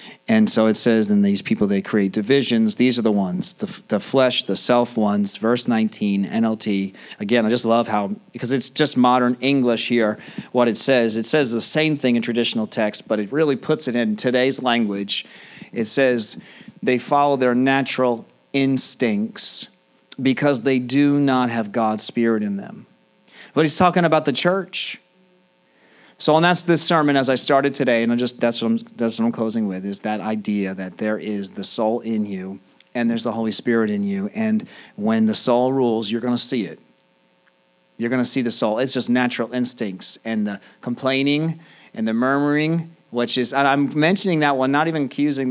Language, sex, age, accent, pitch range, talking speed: English, male, 40-59, American, 110-145 Hz, 195 wpm